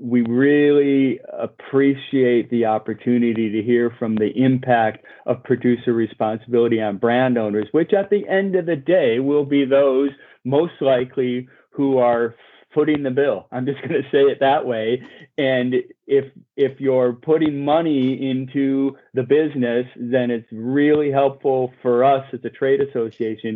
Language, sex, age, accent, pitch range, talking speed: English, male, 40-59, American, 120-140 Hz, 155 wpm